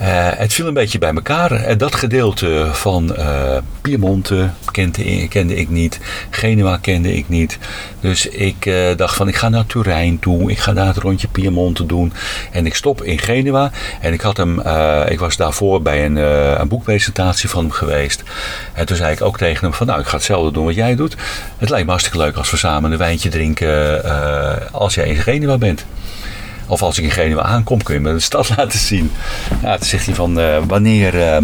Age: 50-69